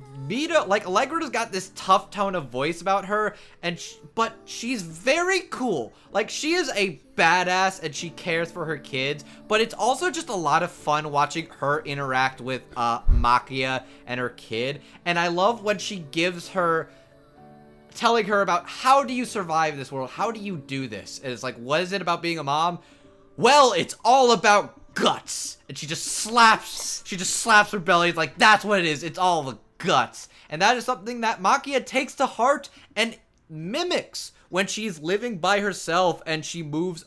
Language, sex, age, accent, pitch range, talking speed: English, male, 20-39, American, 145-220 Hz, 195 wpm